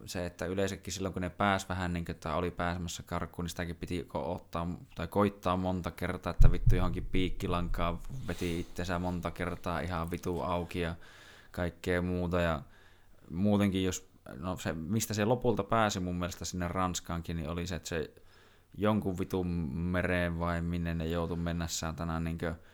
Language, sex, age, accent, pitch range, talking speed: Finnish, male, 20-39, native, 85-95 Hz, 165 wpm